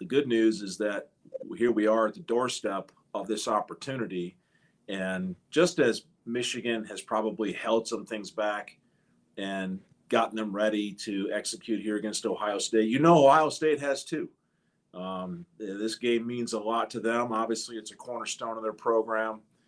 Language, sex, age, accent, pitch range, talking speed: English, male, 40-59, American, 110-130 Hz, 170 wpm